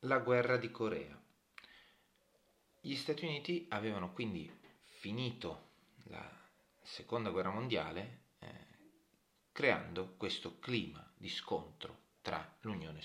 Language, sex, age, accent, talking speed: Italian, male, 30-49, native, 100 wpm